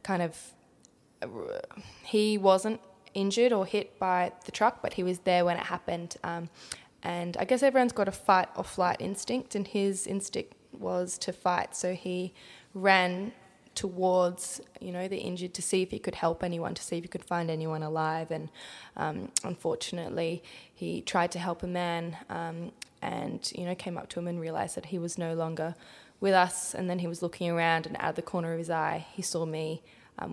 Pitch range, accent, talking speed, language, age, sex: 175-195 Hz, Australian, 200 wpm, English, 10-29, female